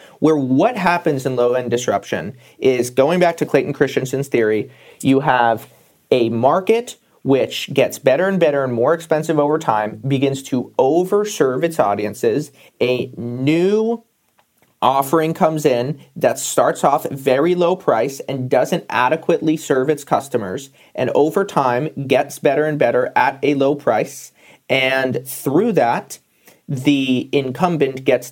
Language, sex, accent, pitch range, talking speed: English, male, American, 125-155 Hz, 140 wpm